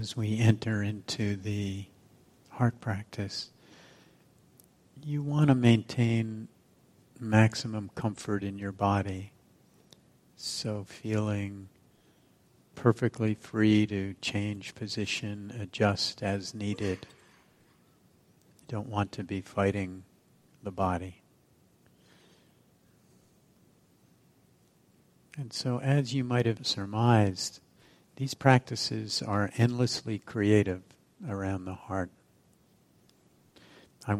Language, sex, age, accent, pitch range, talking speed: English, male, 50-69, American, 100-115 Hz, 90 wpm